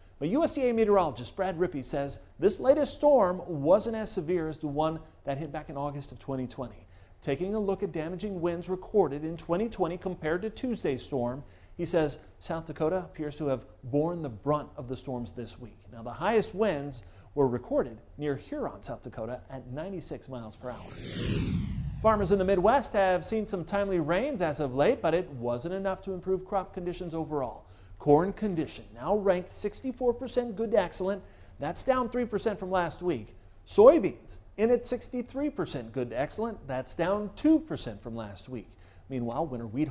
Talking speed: 175 wpm